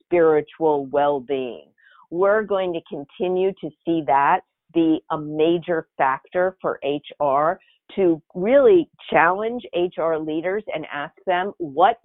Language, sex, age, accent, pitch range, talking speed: English, female, 50-69, American, 145-180 Hz, 120 wpm